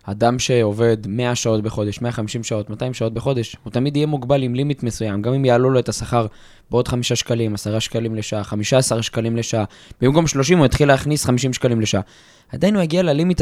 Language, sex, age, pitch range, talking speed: Hebrew, male, 20-39, 115-160 Hz, 195 wpm